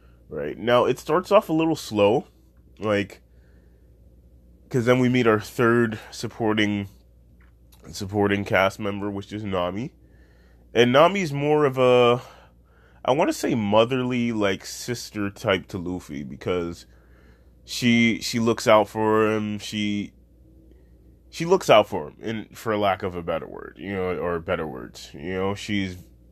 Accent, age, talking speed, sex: American, 20-39, 150 wpm, male